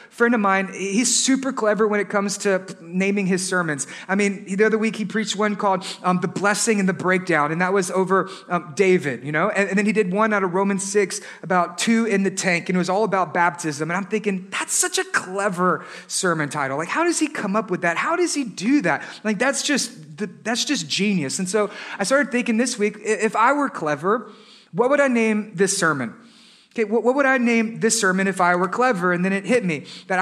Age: 30-49